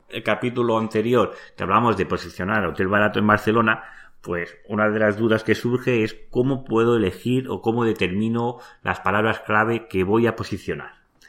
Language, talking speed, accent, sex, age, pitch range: Spanish, 165 wpm, Spanish, male, 30-49, 90-115 Hz